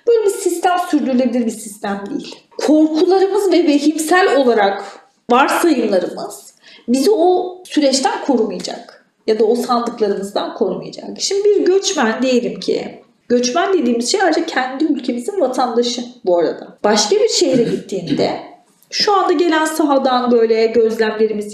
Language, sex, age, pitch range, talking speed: Turkish, female, 40-59, 230-335 Hz, 125 wpm